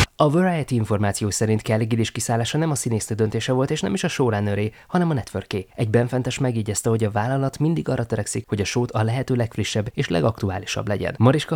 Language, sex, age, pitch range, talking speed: Hungarian, male, 20-39, 105-130 Hz, 200 wpm